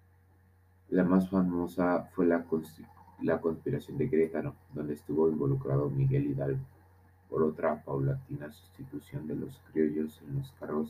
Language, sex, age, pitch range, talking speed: Spanish, male, 40-59, 80-95 Hz, 130 wpm